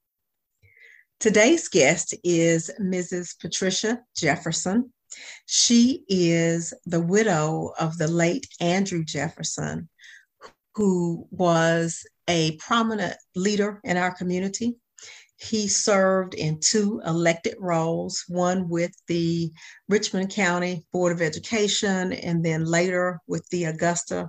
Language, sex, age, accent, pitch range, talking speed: English, female, 40-59, American, 165-190 Hz, 105 wpm